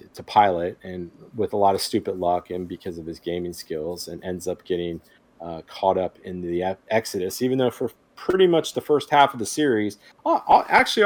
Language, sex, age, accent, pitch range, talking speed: English, male, 40-59, American, 90-105 Hz, 200 wpm